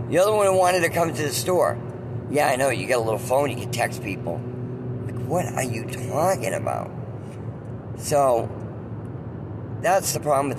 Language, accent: English, American